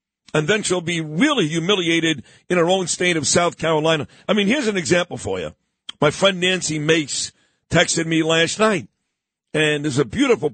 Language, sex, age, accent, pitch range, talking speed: English, male, 50-69, American, 160-210 Hz, 180 wpm